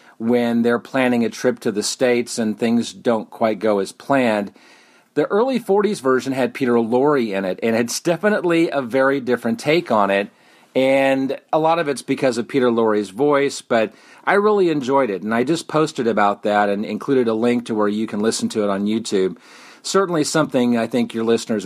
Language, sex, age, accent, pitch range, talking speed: English, male, 40-59, American, 110-140 Hz, 200 wpm